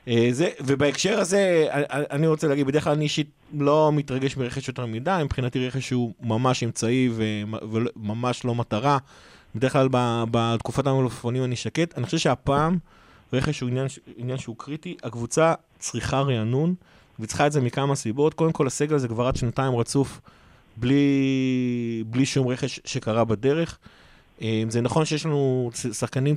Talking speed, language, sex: 150 wpm, Hebrew, male